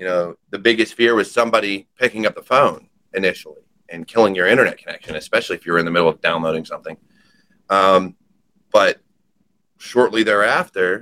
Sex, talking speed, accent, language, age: male, 165 wpm, American, English, 30-49